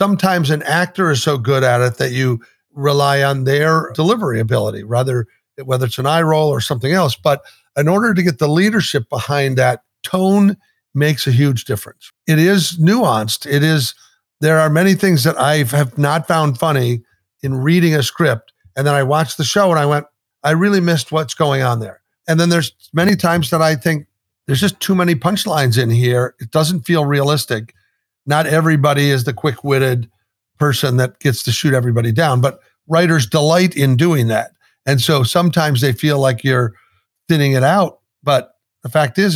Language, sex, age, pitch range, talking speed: English, male, 50-69, 130-165 Hz, 190 wpm